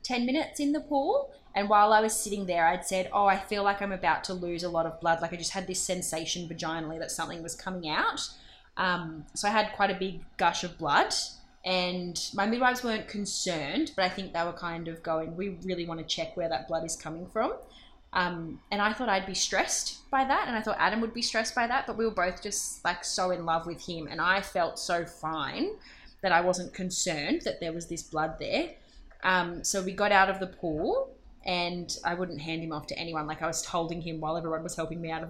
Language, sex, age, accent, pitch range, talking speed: English, female, 10-29, Australian, 165-210 Hz, 245 wpm